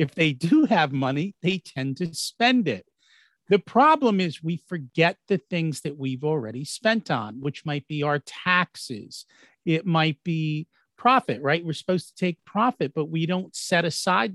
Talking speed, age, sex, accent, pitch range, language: 175 wpm, 50-69, male, American, 140-190 Hz, English